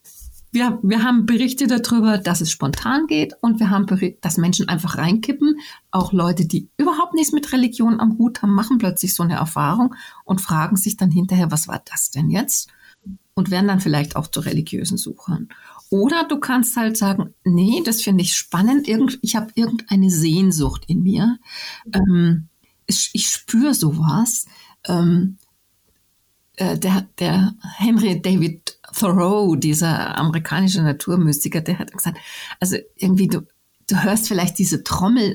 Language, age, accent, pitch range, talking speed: German, 50-69, German, 175-225 Hz, 155 wpm